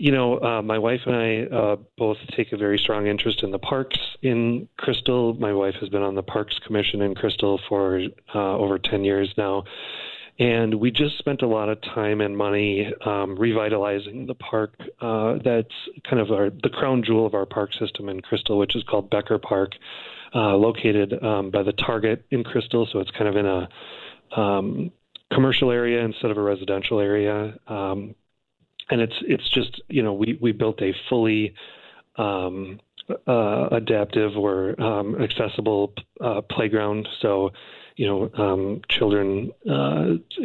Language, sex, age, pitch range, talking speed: English, male, 30-49, 100-115 Hz, 170 wpm